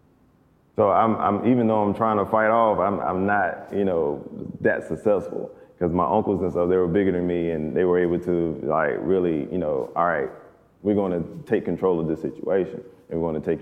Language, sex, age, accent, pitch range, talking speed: English, male, 20-39, American, 85-100 Hz, 225 wpm